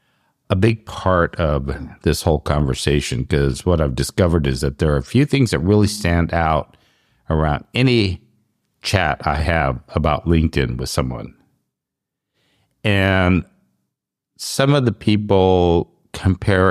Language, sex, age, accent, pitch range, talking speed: English, male, 50-69, American, 70-100 Hz, 135 wpm